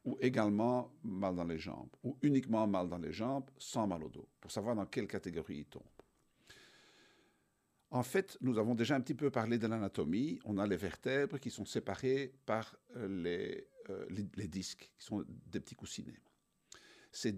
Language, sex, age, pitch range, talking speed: French, male, 60-79, 100-130 Hz, 185 wpm